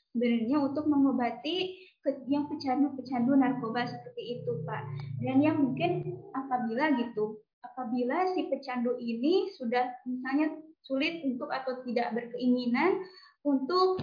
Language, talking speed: Indonesian, 110 wpm